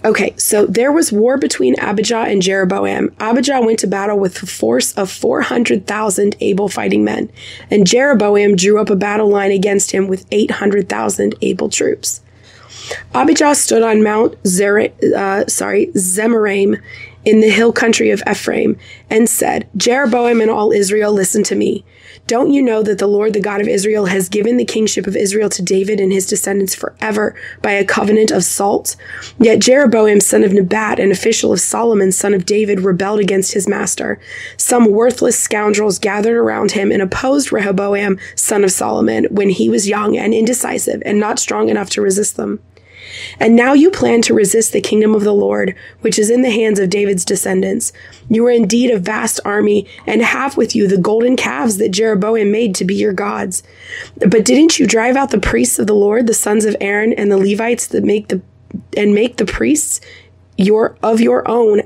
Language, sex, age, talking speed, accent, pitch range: English, female, 20-39, 185 wpm, American, 200-230 Hz